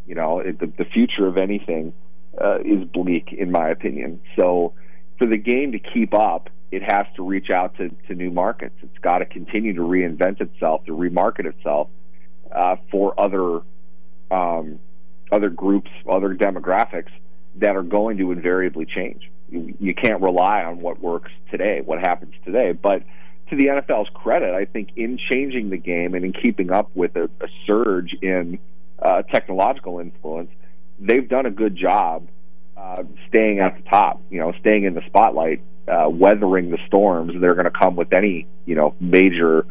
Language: English